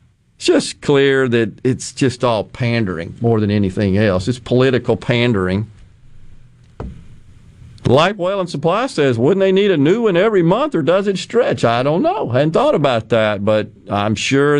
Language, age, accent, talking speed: English, 50-69, American, 175 wpm